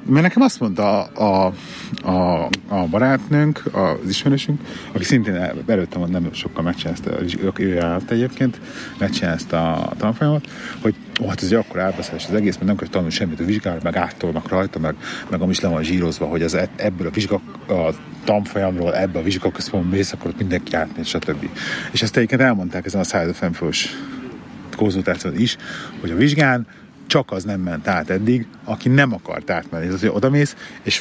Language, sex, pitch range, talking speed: Hungarian, male, 90-130 Hz, 175 wpm